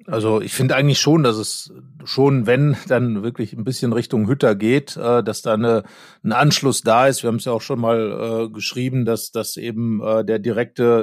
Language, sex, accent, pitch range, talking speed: German, male, German, 115-140 Hz, 205 wpm